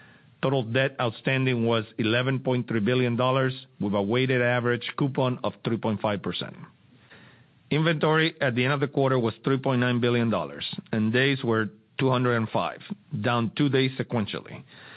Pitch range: 115-135 Hz